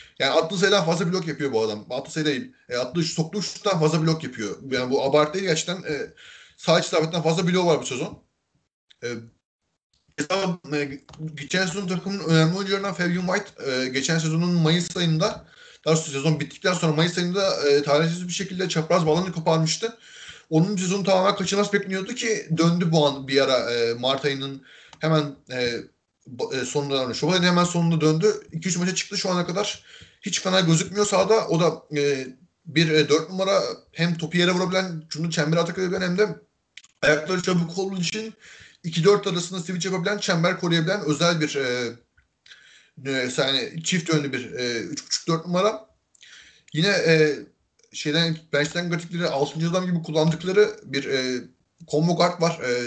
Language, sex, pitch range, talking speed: Turkish, male, 150-185 Hz, 160 wpm